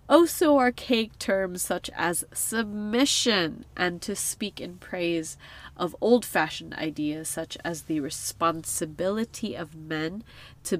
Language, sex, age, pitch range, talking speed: English, female, 20-39, 165-220 Hz, 115 wpm